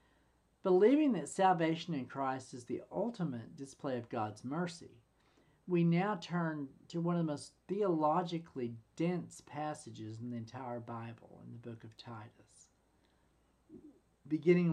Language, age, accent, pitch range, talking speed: English, 50-69, American, 120-175 Hz, 135 wpm